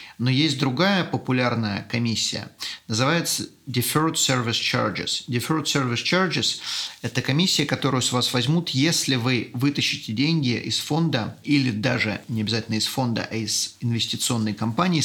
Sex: male